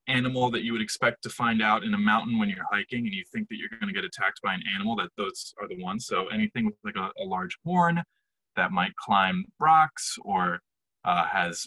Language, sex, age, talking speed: English, male, 20-39, 235 wpm